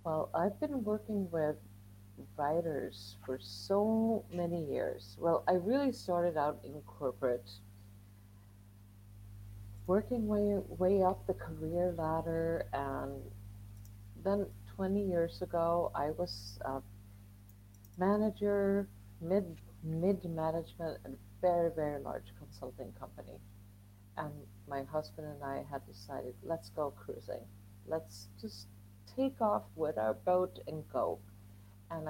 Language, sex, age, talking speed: English, female, 50-69, 120 wpm